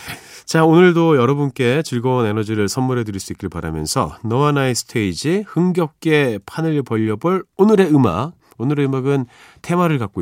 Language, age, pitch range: Korean, 40-59, 105-175 Hz